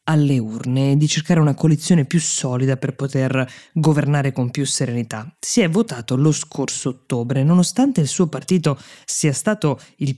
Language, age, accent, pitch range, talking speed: Italian, 20-39, native, 135-190 Hz, 160 wpm